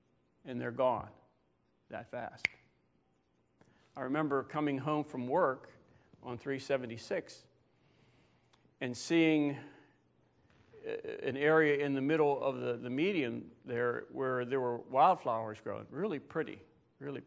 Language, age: English, 50-69